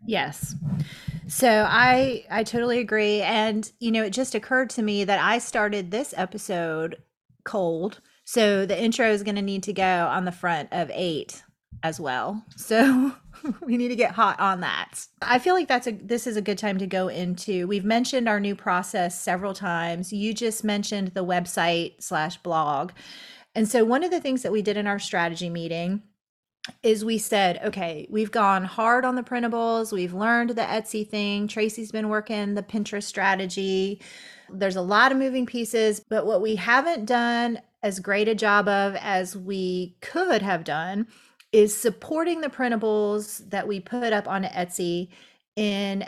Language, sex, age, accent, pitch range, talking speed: English, female, 30-49, American, 190-225 Hz, 180 wpm